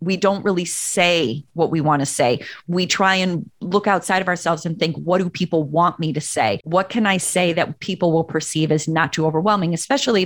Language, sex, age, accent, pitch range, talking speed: English, female, 30-49, American, 165-200 Hz, 220 wpm